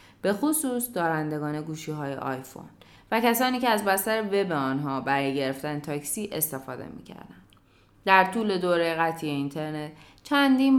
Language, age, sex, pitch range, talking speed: Persian, 20-39, female, 145-210 Hz, 135 wpm